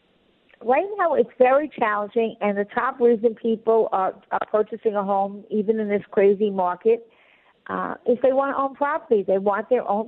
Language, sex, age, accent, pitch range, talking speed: English, female, 50-69, American, 195-245 Hz, 185 wpm